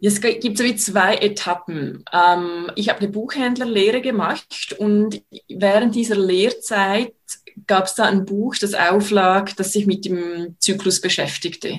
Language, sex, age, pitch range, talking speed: German, female, 20-39, 185-220 Hz, 145 wpm